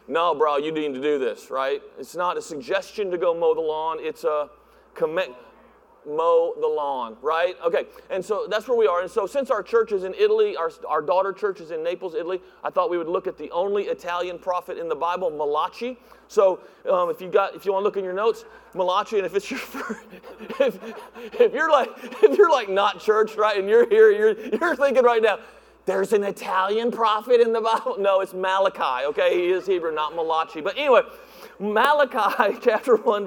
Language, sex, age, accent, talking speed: English, male, 40-59, American, 215 wpm